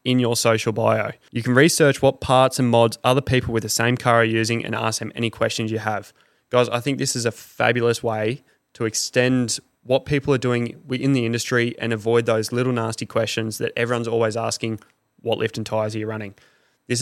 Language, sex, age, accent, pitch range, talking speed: English, male, 20-39, Australian, 115-125 Hz, 215 wpm